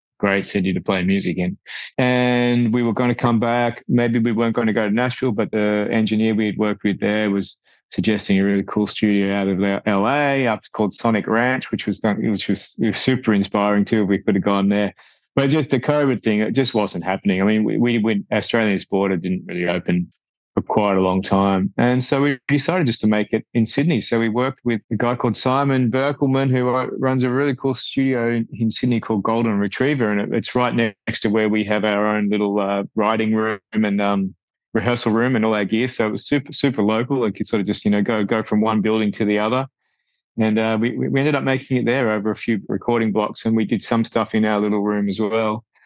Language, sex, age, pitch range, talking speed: English, male, 30-49, 105-125 Hz, 235 wpm